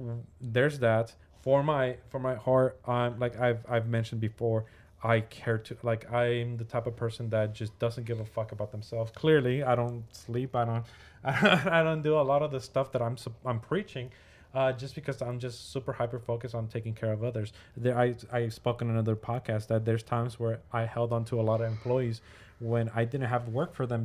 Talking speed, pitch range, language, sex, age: 220 wpm, 115-125 Hz, English, male, 20-39